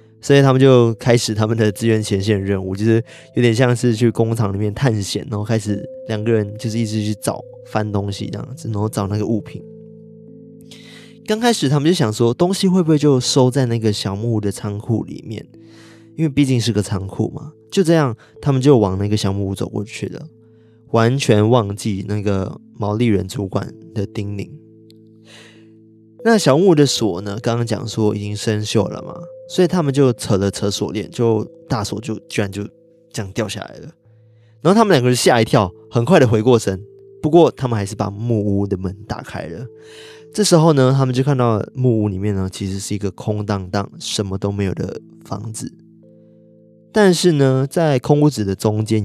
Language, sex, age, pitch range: Chinese, male, 20-39, 105-140 Hz